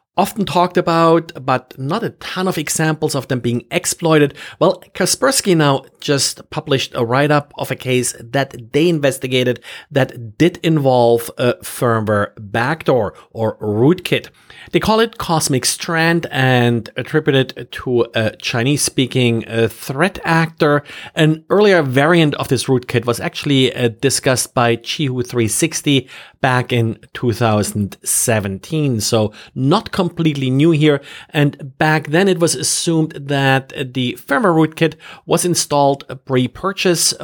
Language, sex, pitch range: English, male, 120-160 Hz